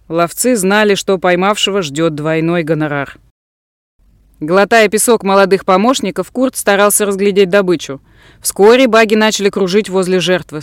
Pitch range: 175-270 Hz